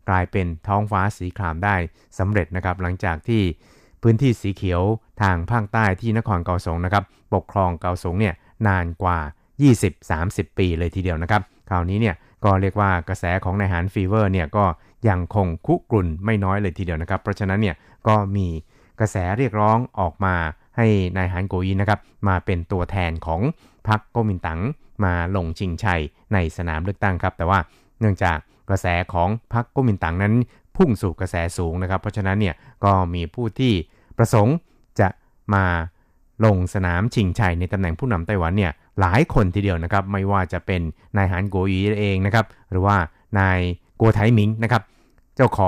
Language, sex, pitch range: Thai, male, 90-105 Hz